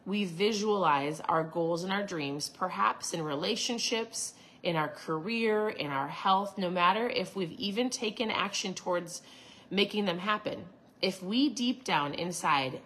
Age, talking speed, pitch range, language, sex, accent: 30-49, 150 wpm, 160-200 Hz, English, female, American